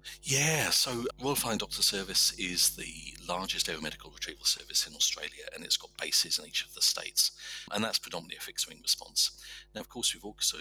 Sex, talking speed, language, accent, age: male, 190 wpm, English, British, 50-69